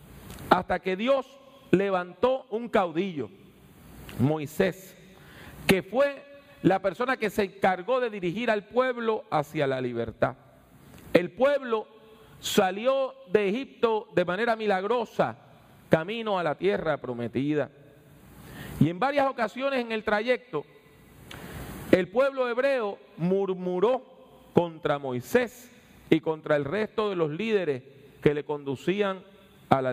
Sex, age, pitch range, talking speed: male, 40-59, 175-240 Hz, 120 wpm